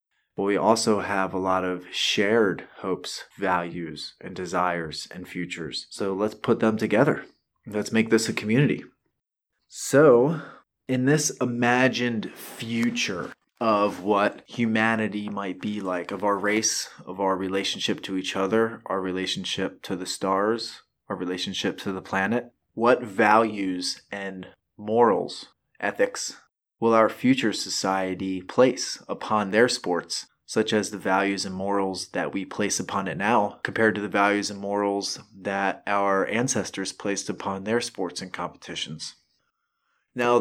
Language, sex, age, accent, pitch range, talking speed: English, male, 20-39, American, 95-110 Hz, 140 wpm